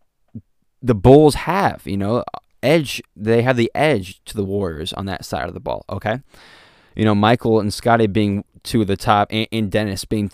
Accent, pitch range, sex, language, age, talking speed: American, 95-115 Hz, male, English, 20-39, 195 wpm